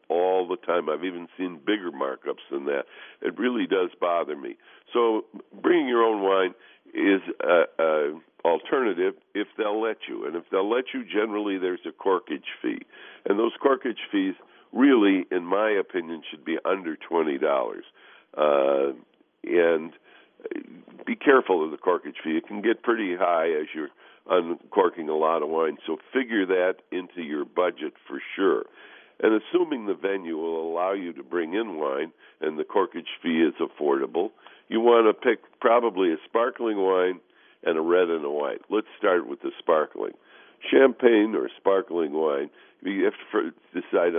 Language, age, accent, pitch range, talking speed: English, 60-79, American, 295-420 Hz, 165 wpm